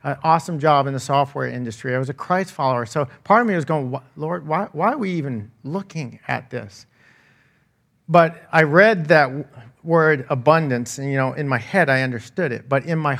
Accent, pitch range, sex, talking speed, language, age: American, 130-165 Hz, male, 205 wpm, English, 40-59